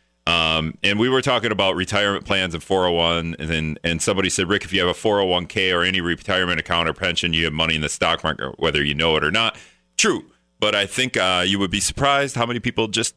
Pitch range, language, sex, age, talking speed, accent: 80-100 Hz, English, male, 40-59, 240 wpm, American